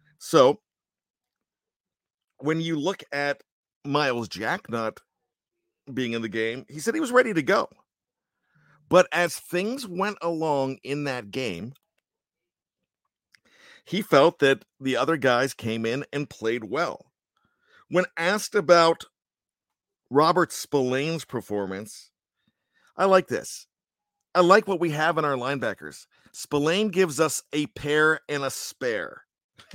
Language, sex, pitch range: English, male, 125-160 Hz